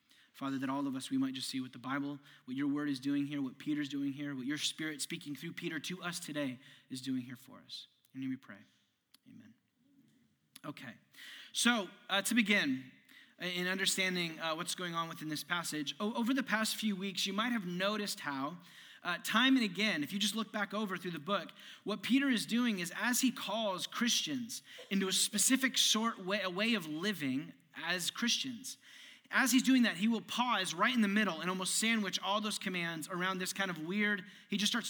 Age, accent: 20-39, American